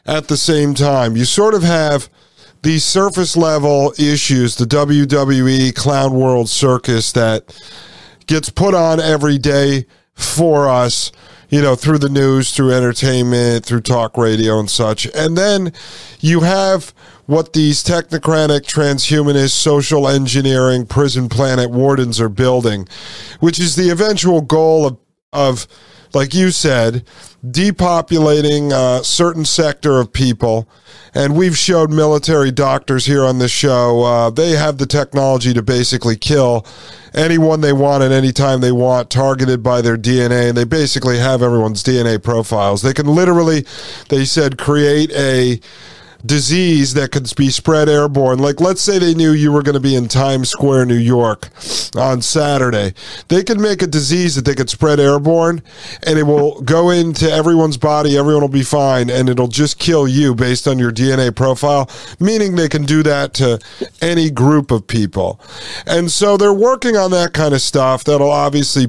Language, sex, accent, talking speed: English, male, American, 160 wpm